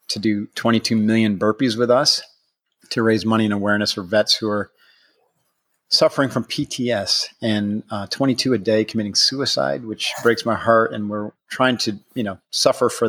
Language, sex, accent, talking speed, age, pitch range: English, male, American, 175 wpm, 40-59, 105-115 Hz